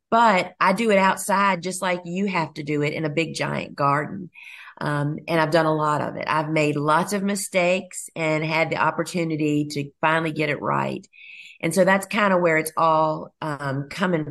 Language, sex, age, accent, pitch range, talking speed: English, female, 40-59, American, 160-200 Hz, 205 wpm